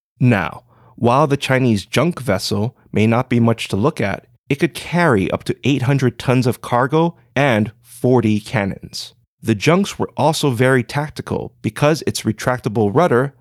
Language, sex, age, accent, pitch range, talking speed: English, male, 30-49, American, 110-145 Hz, 155 wpm